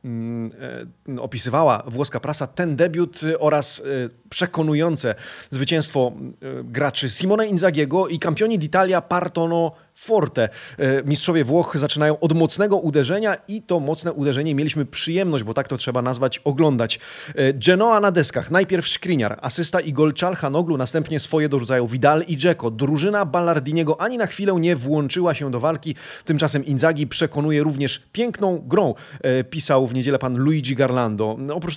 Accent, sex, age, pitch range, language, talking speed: native, male, 30-49, 135-170 Hz, Polish, 135 wpm